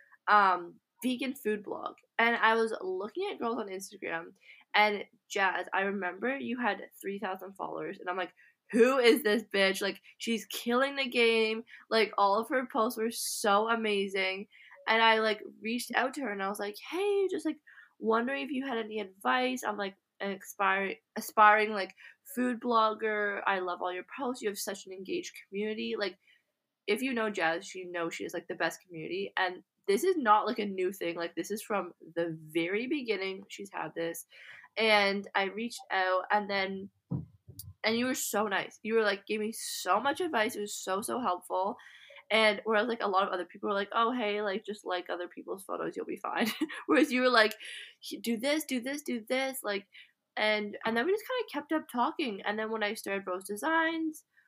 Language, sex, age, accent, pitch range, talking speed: English, female, 20-39, American, 195-245 Hz, 205 wpm